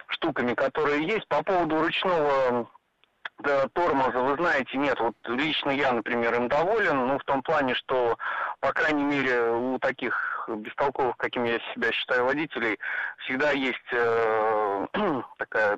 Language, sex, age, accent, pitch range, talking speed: Russian, male, 30-49, native, 120-155 Hz, 140 wpm